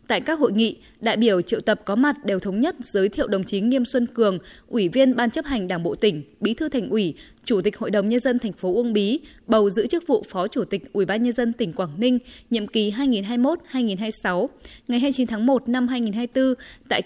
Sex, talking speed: female, 230 wpm